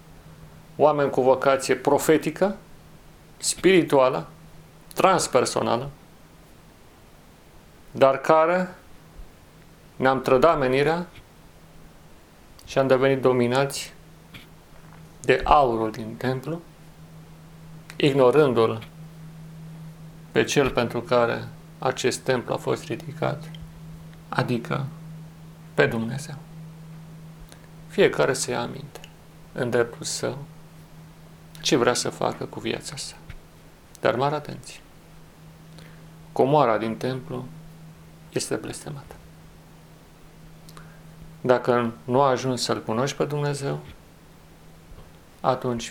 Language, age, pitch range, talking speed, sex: Romanian, 40-59, 130-160 Hz, 80 wpm, male